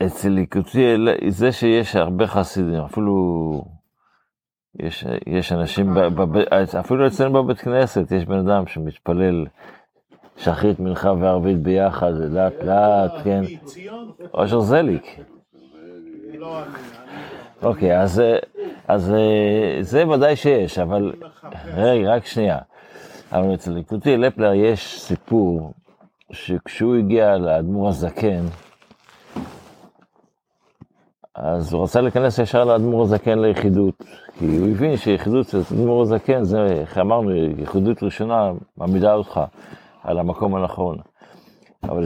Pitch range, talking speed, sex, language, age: 90-120 Hz, 100 wpm, male, Hebrew, 50-69